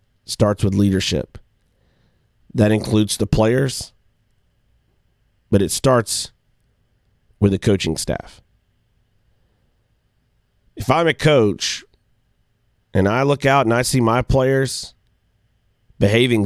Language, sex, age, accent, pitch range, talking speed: English, male, 40-59, American, 100-120 Hz, 100 wpm